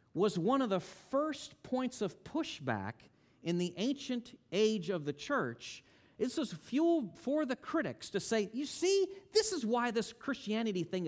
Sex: male